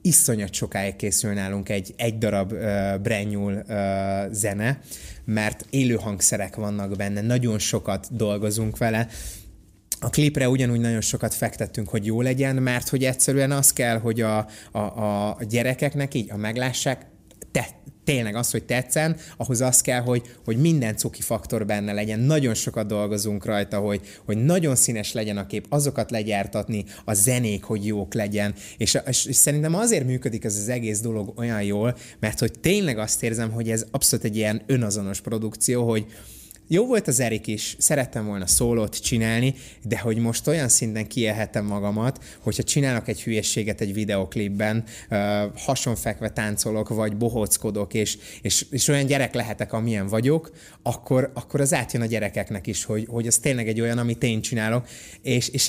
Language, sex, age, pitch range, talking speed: Hungarian, male, 20-39, 105-125 Hz, 160 wpm